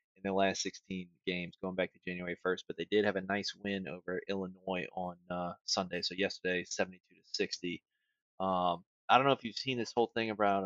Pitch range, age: 95-105 Hz, 20-39